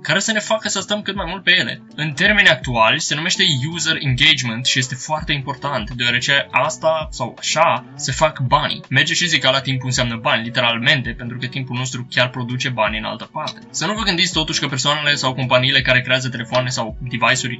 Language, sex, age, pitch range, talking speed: Romanian, male, 20-39, 125-160 Hz, 210 wpm